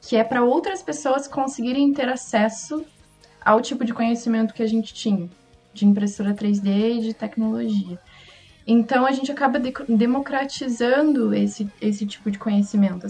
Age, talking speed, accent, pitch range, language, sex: 20-39, 145 wpm, Brazilian, 205-245 Hz, Portuguese, female